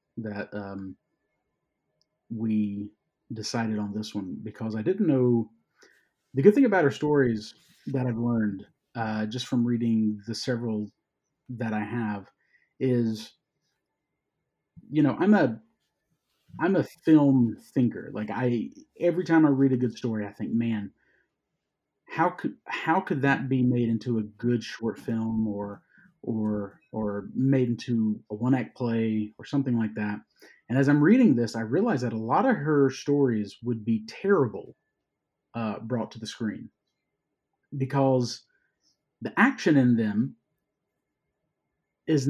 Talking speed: 145 wpm